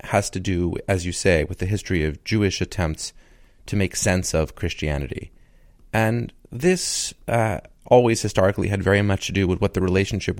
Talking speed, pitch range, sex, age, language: 180 wpm, 85-100 Hz, male, 30-49, English